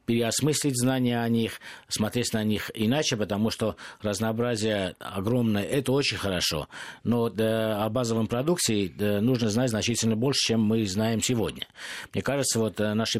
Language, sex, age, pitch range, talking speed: Russian, male, 50-69, 100-120 Hz, 140 wpm